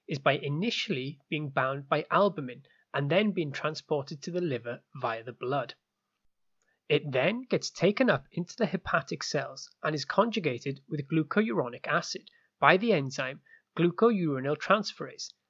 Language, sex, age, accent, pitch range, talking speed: English, male, 20-39, British, 135-185 Hz, 145 wpm